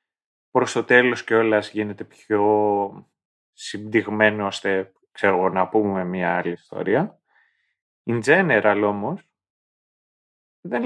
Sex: male